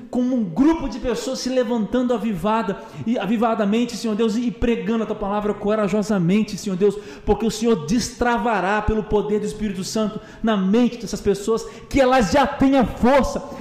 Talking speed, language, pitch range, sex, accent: 170 wpm, Portuguese, 220-255 Hz, male, Brazilian